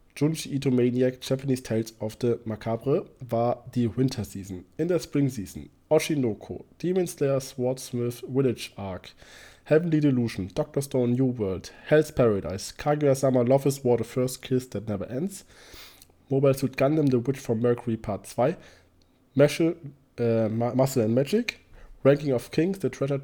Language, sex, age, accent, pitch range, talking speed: German, male, 20-39, German, 115-145 Hz, 150 wpm